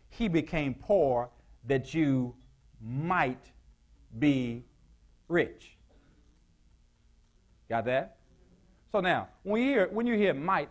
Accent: American